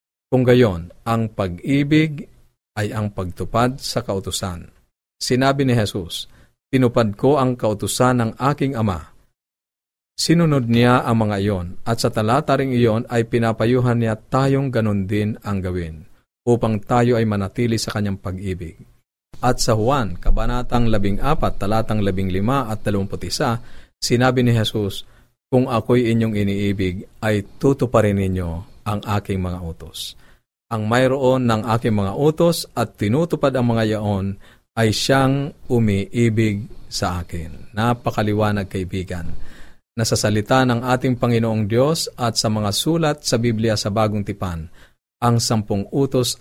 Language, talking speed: Filipino, 130 wpm